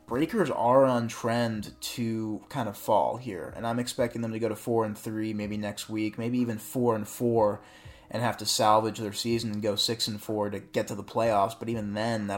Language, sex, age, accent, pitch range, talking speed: English, male, 20-39, American, 105-120 Hz, 235 wpm